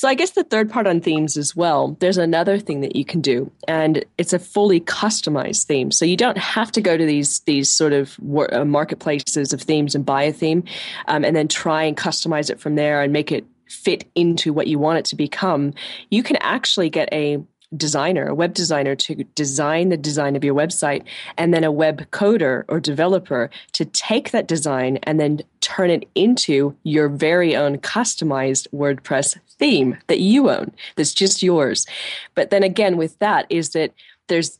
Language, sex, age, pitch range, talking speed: English, female, 20-39, 145-175 Hz, 195 wpm